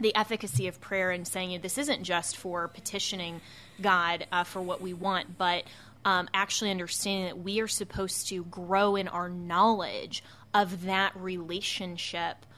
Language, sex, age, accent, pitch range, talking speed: English, female, 20-39, American, 180-200 Hz, 155 wpm